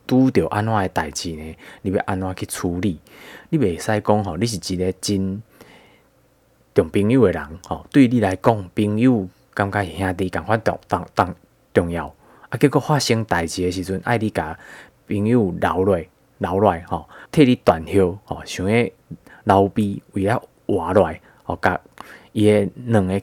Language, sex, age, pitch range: Chinese, male, 20-39, 85-110 Hz